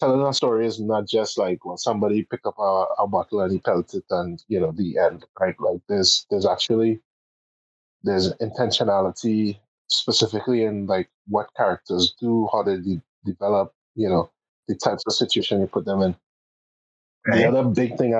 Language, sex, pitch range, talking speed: English, male, 100-125 Hz, 175 wpm